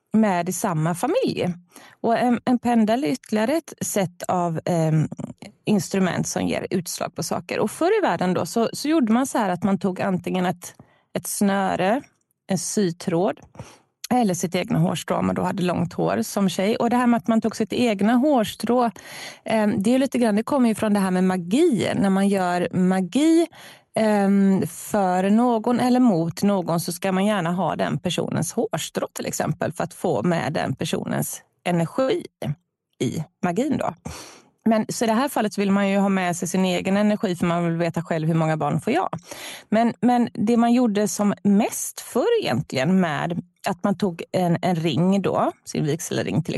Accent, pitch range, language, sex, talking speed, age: native, 175-230 Hz, Swedish, female, 190 wpm, 30-49